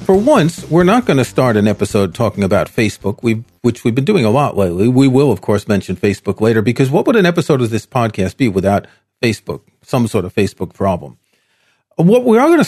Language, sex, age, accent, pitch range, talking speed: English, male, 40-59, American, 115-160 Hz, 225 wpm